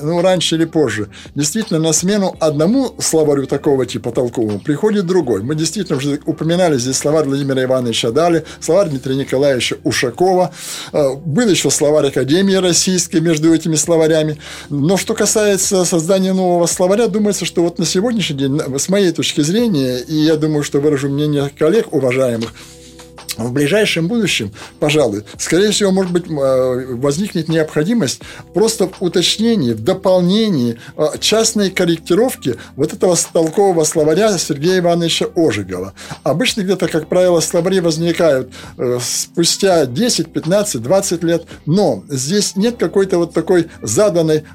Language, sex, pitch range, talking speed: Russian, male, 145-190 Hz, 135 wpm